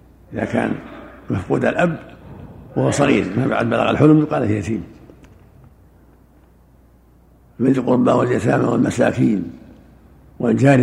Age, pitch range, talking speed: 60-79, 110-140 Hz, 100 wpm